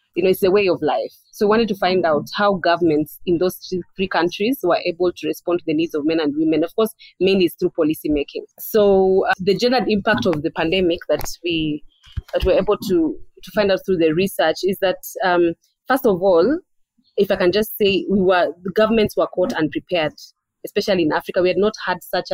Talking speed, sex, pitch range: 225 wpm, female, 165-205 Hz